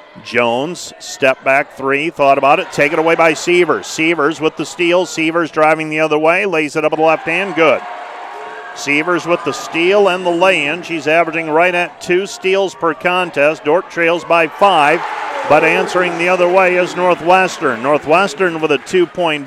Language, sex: English, male